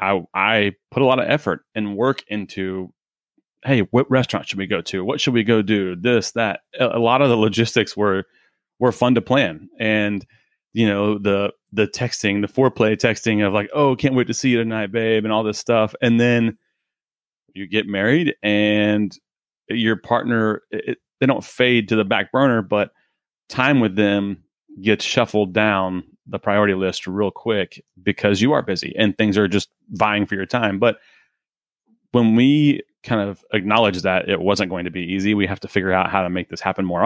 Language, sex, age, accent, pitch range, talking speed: English, male, 30-49, American, 100-120 Hz, 200 wpm